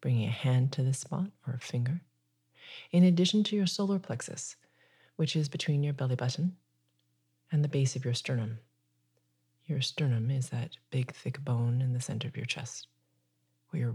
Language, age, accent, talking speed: English, 30-49, American, 180 wpm